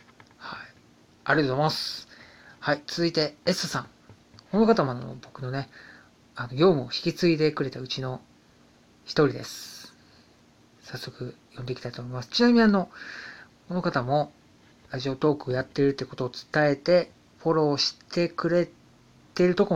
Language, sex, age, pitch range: Japanese, male, 40-59, 130-165 Hz